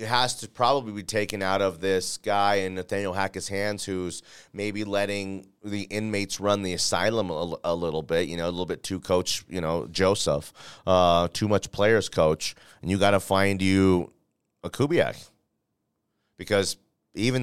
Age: 30-49